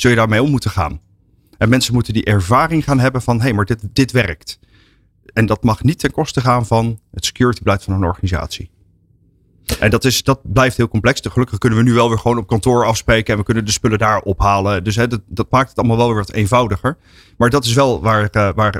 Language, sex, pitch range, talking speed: Dutch, male, 100-120 Hz, 240 wpm